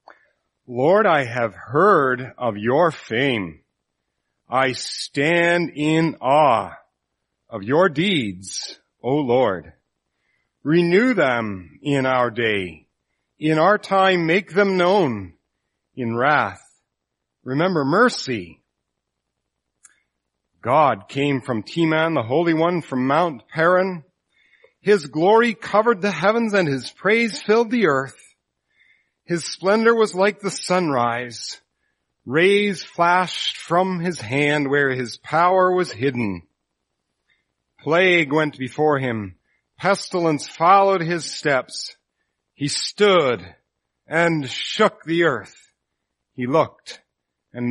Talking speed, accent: 105 wpm, American